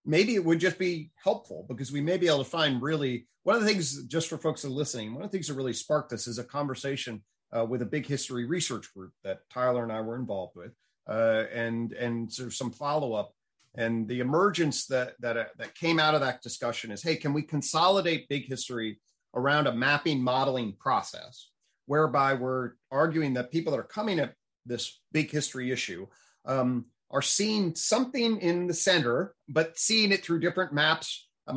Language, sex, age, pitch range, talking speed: English, male, 30-49, 120-155 Hz, 205 wpm